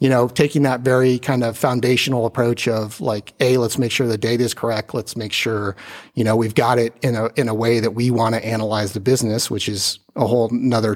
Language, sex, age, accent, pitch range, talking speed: English, male, 30-49, American, 110-125 Hz, 240 wpm